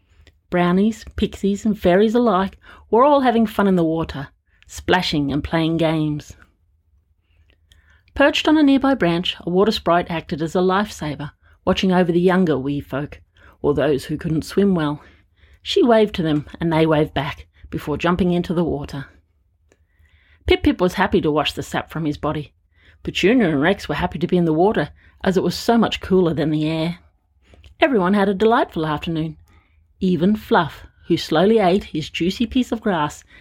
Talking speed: 175 wpm